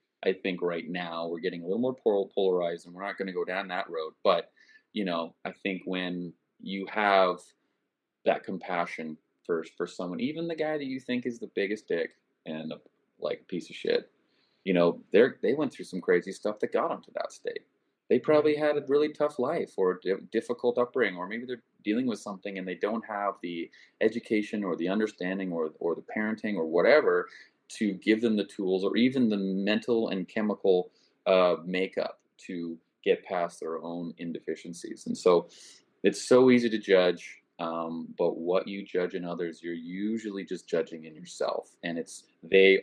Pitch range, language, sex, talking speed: 90-120 Hz, English, male, 195 wpm